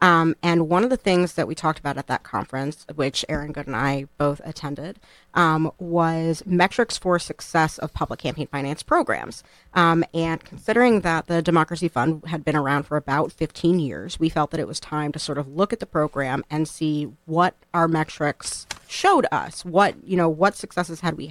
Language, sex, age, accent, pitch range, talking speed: English, female, 40-59, American, 150-170 Hz, 200 wpm